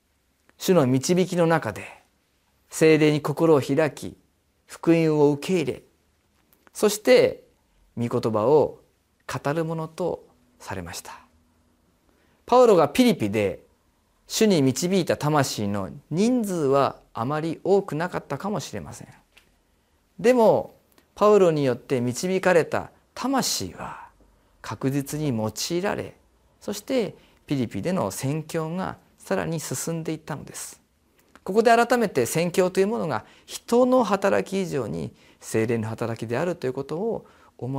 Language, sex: Japanese, male